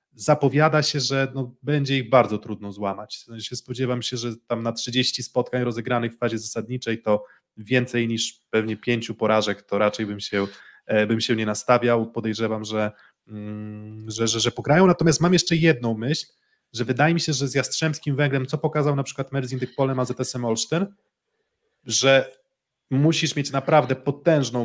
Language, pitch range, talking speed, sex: Polish, 115-135 Hz, 165 wpm, male